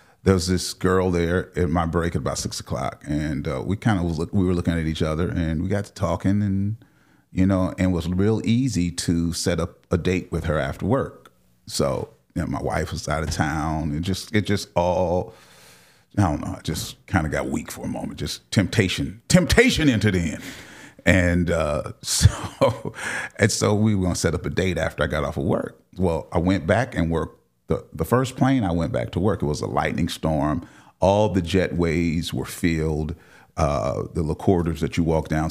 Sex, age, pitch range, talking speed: male, 40-59, 80-95 Hz, 215 wpm